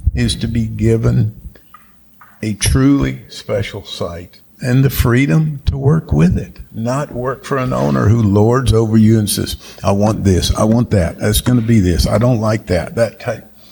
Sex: male